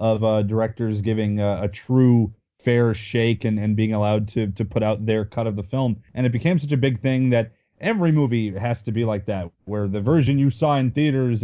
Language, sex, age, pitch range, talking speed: English, male, 30-49, 115-140 Hz, 230 wpm